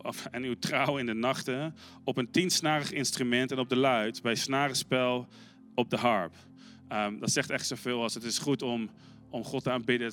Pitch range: 110-140 Hz